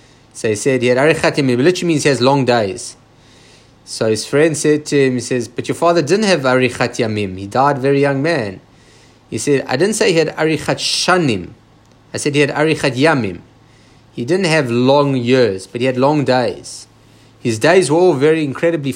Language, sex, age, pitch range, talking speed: English, male, 30-49, 125-165 Hz, 205 wpm